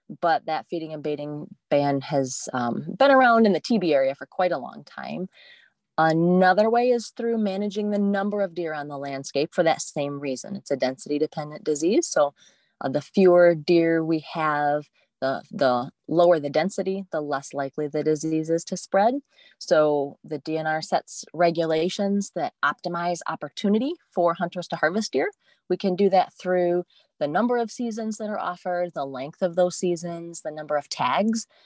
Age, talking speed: 30-49, 180 wpm